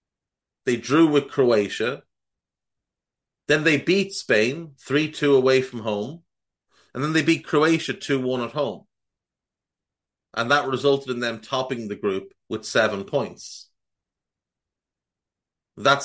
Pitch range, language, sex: 100-135 Hz, English, male